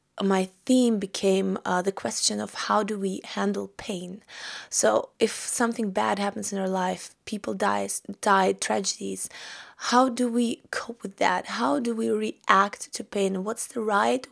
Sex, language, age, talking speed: female, German, 20-39, 165 wpm